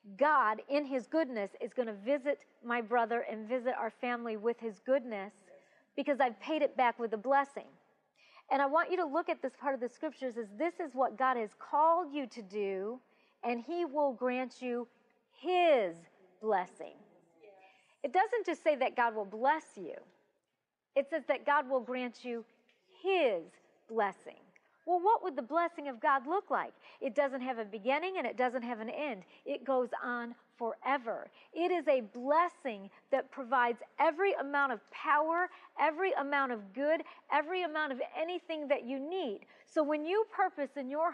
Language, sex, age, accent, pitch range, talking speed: English, female, 40-59, American, 240-315 Hz, 180 wpm